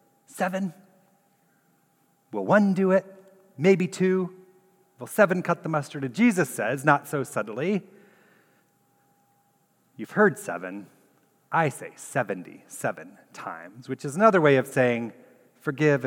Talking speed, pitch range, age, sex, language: 120 wpm, 130-185 Hz, 40-59, male, English